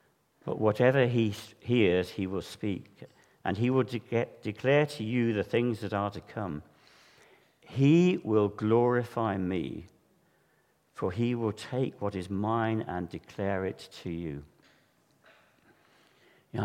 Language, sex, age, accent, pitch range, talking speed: English, male, 60-79, British, 100-125 Hz, 130 wpm